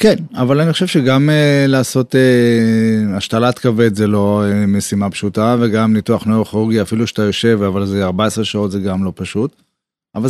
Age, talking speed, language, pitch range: 30-49, 175 wpm, Hebrew, 100-125 Hz